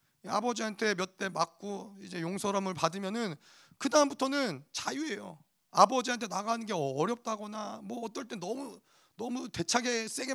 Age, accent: 30-49, native